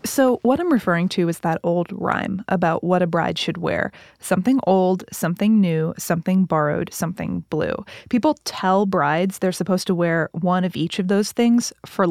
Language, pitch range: English, 165-215 Hz